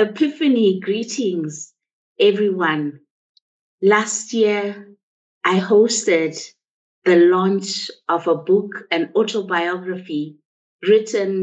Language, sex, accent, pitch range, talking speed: English, female, South African, 175-210 Hz, 80 wpm